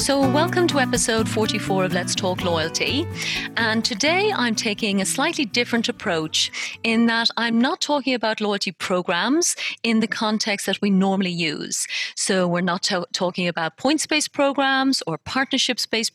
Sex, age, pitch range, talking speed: female, 30-49, 185-255 Hz, 150 wpm